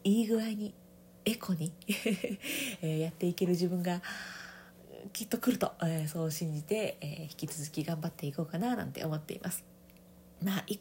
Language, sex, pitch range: Japanese, female, 165-210 Hz